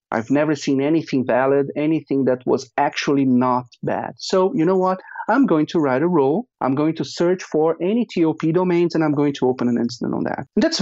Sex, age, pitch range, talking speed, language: male, 40-59, 130-170 Hz, 220 wpm, English